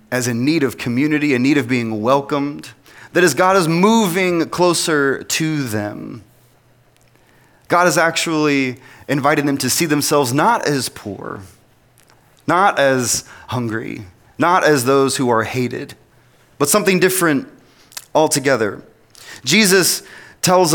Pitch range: 130-180 Hz